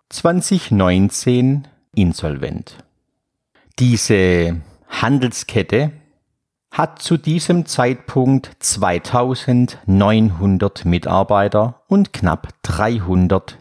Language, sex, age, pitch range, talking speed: German, male, 50-69, 100-140 Hz, 55 wpm